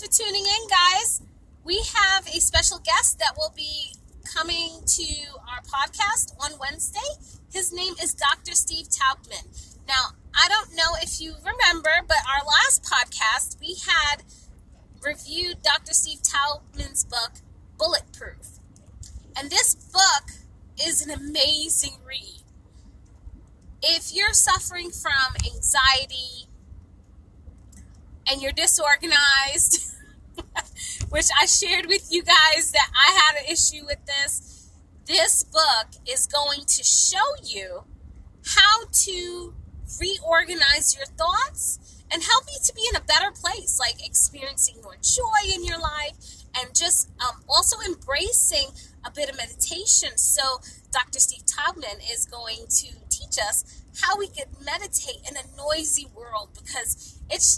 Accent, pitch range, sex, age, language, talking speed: American, 280-380 Hz, female, 20-39, English, 130 wpm